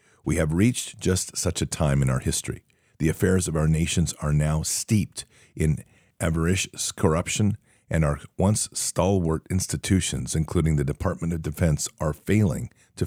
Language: English